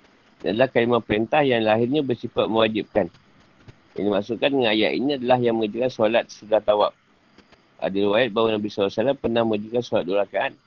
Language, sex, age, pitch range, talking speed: Malay, male, 50-69, 105-135 Hz, 165 wpm